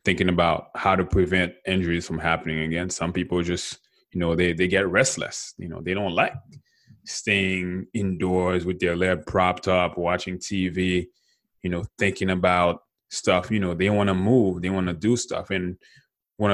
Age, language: 20-39, English